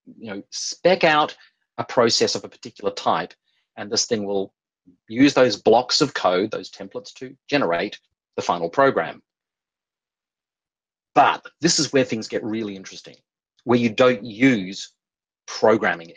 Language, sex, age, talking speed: English, male, 30-49, 145 wpm